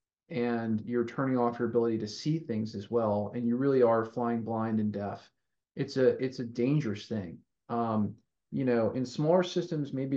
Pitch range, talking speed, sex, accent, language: 110-125 Hz, 190 wpm, male, American, English